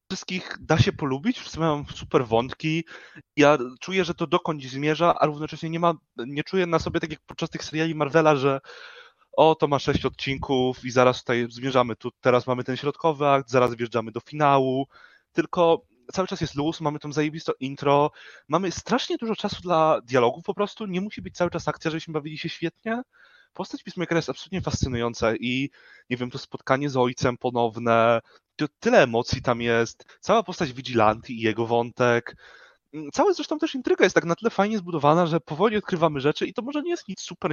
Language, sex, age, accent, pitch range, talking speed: Polish, male, 20-39, native, 130-180 Hz, 190 wpm